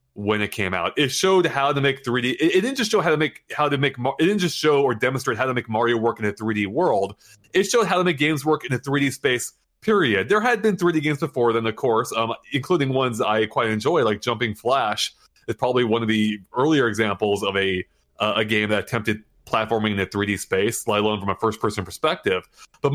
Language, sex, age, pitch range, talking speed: English, male, 20-39, 105-140 Hz, 245 wpm